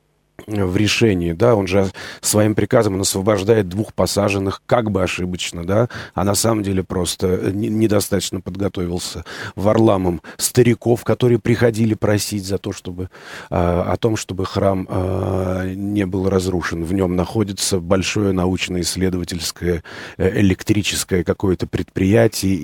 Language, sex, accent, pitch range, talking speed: Russian, male, native, 90-105 Hz, 125 wpm